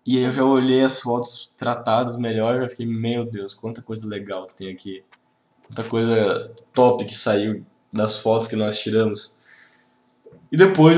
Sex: male